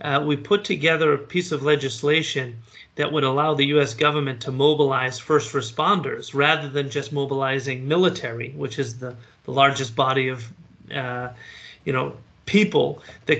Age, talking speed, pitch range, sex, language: 30-49, 155 wpm, 135-175 Hz, male, English